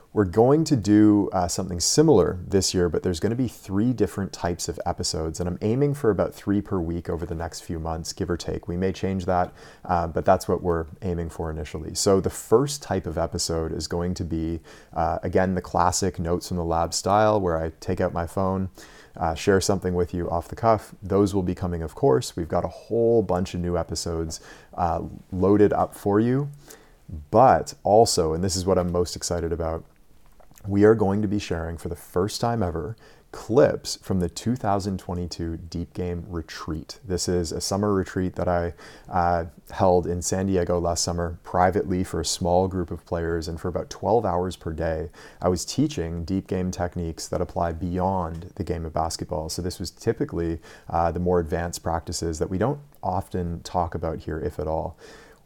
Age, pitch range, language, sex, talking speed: 30-49, 85-95 Hz, English, male, 200 wpm